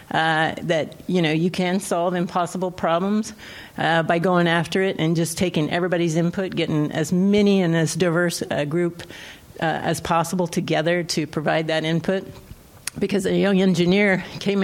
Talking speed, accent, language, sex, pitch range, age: 165 wpm, American, English, female, 160-190 Hz, 50-69